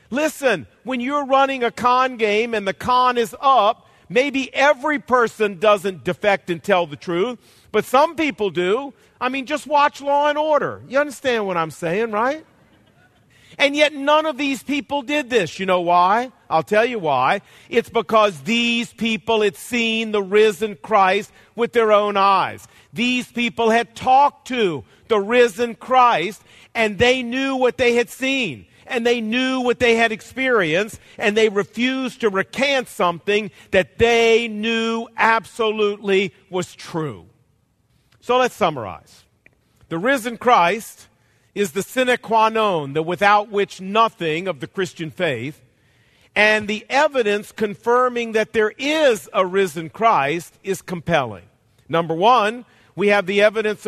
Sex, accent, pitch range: male, American, 185-245 Hz